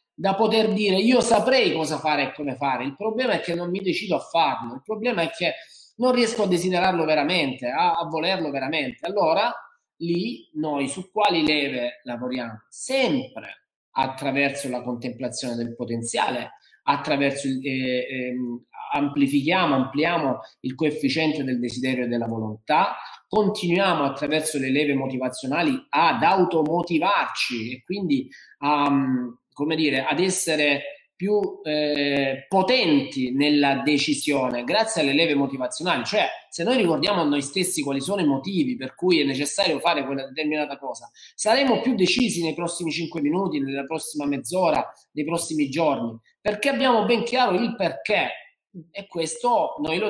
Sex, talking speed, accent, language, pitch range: male, 145 wpm, native, Italian, 135-190 Hz